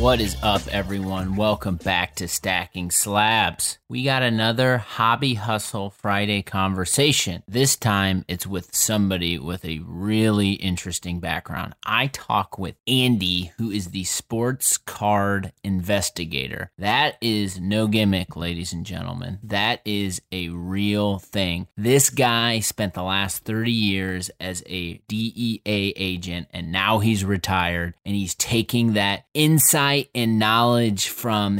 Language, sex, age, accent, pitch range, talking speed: English, male, 30-49, American, 95-115 Hz, 135 wpm